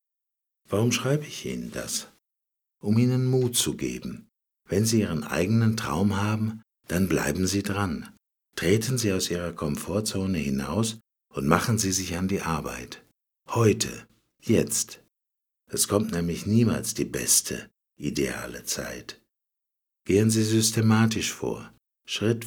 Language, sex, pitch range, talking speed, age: Slovak, male, 80-110 Hz, 130 wpm, 60-79